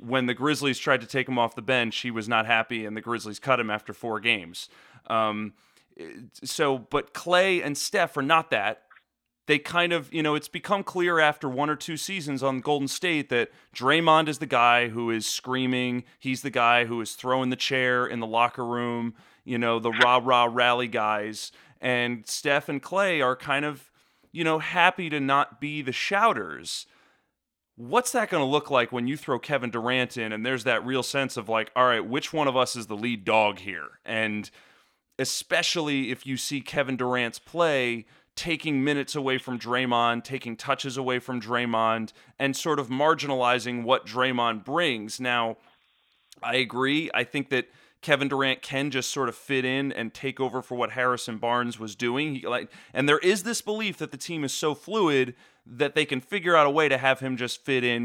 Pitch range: 120-145 Hz